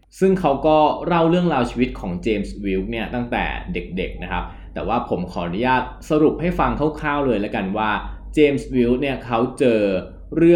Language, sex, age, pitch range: Thai, male, 20-39, 95-130 Hz